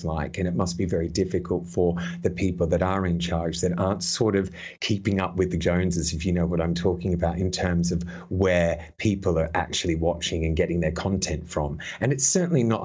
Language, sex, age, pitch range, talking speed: English, male, 30-49, 85-100 Hz, 220 wpm